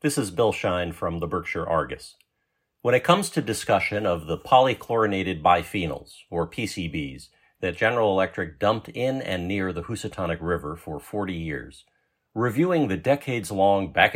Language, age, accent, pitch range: English, 50-69, American, 90-115 Hz